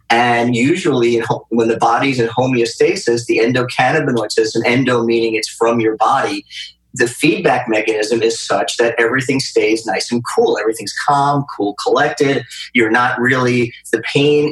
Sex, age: male, 30-49